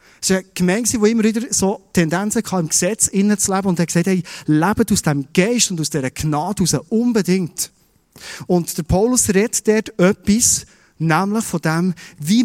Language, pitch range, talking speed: German, 160-215 Hz, 190 wpm